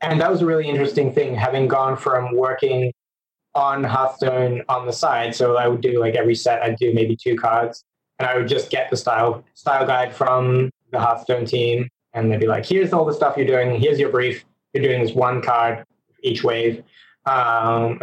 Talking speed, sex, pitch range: 205 wpm, male, 115-135 Hz